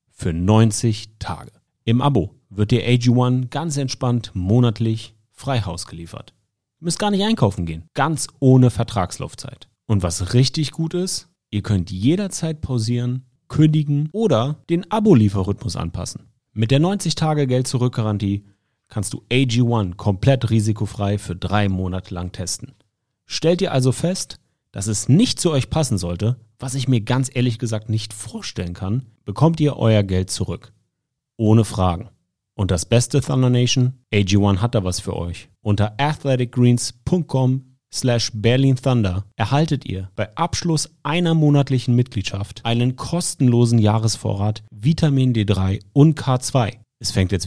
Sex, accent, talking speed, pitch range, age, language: male, German, 140 wpm, 100-130 Hz, 30-49, German